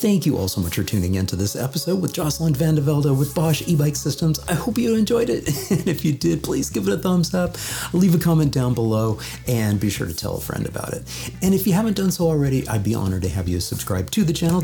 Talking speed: 260 wpm